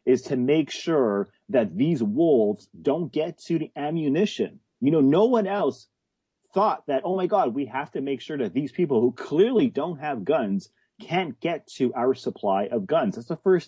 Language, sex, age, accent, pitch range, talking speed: English, male, 30-49, American, 130-200 Hz, 195 wpm